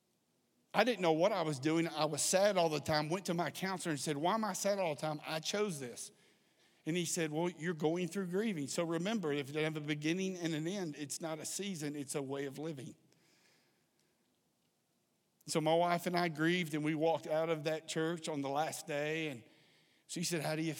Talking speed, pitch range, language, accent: 230 wpm, 145-165 Hz, English, American